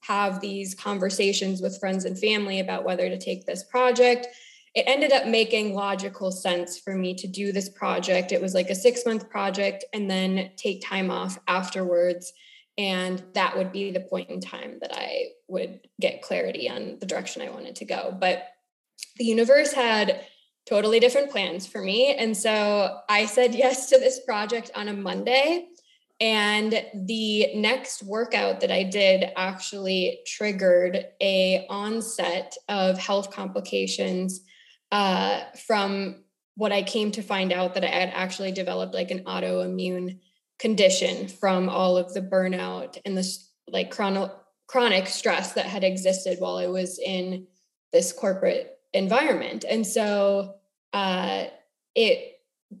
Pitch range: 185-230 Hz